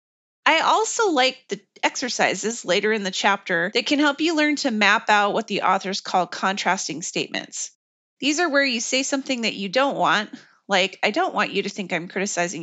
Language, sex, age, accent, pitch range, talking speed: English, female, 30-49, American, 195-255 Hz, 200 wpm